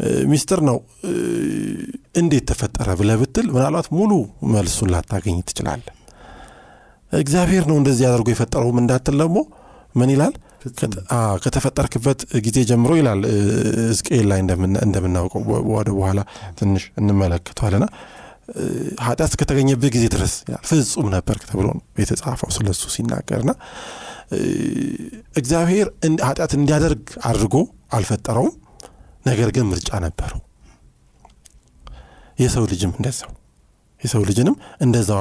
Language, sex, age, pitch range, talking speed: Amharic, male, 50-69, 100-135 Hz, 100 wpm